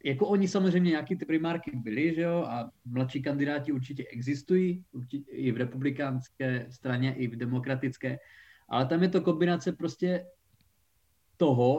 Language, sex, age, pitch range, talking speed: Czech, male, 20-39, 125-155 Hz, 145 wpm